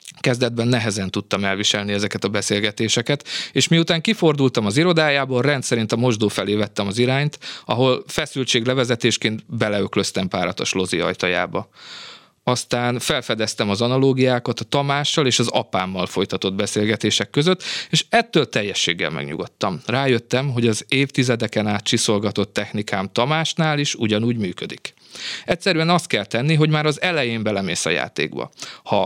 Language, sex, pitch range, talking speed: Hungarian, male, 110-150 Hz, 130 wpm